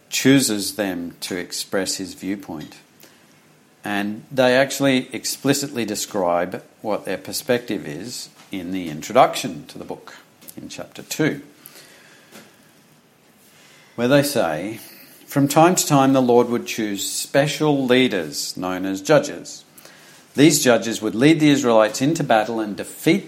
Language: English